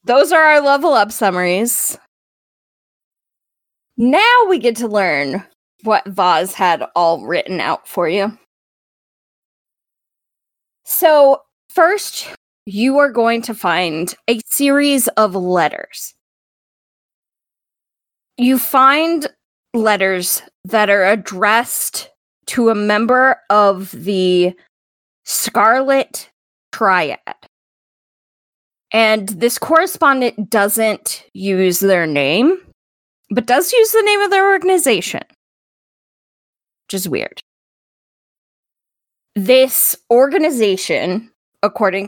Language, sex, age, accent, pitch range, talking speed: English, female, 20-39, American, 195-265 Hz, 90 wpm